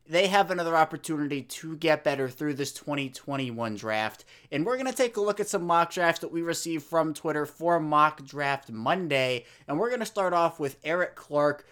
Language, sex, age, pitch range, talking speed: English, male, 20-39, 135-170 Hz, 205 wpm